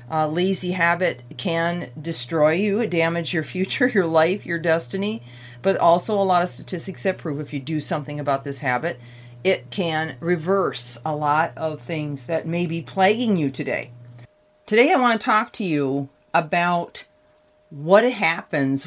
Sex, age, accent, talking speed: female, 40-59, American, 160 wpm